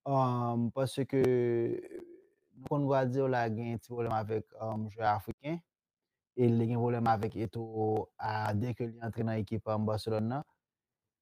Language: French